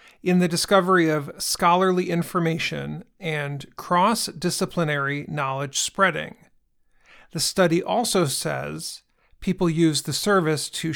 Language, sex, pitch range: English, male, 150-190 Hz